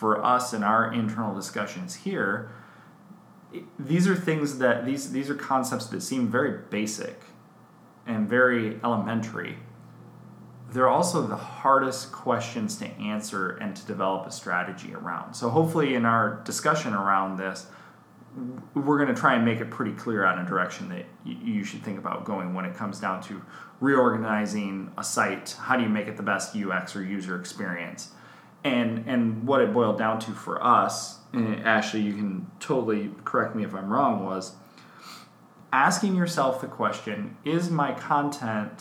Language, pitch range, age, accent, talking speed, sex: English, 105-140 Hz, 20-39, American, 165 wpm, male